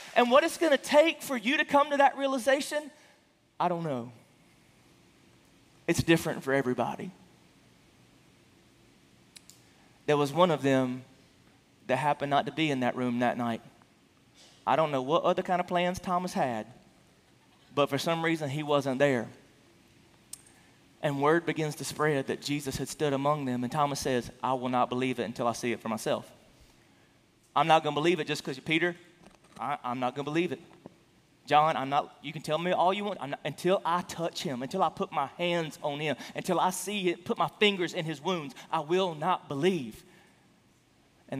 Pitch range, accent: 130-175 Hz, American